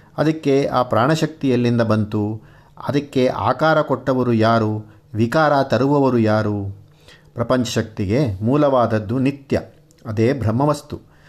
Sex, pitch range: male, 115-150 Hz